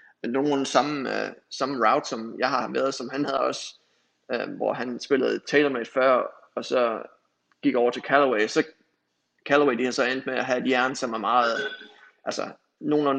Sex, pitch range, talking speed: male, 130-145 Hz, 195 wpm